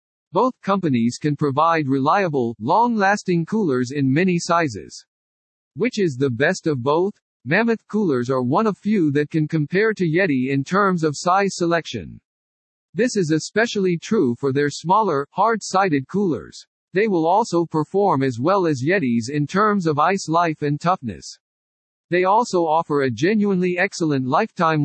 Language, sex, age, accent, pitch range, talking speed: English, male, 50-69, American, 140-195 Hz, 150 wpm